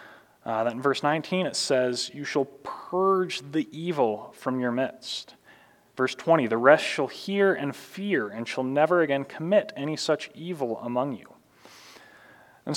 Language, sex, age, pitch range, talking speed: English, male, 30-49, 130-175 Hz, 155 wpm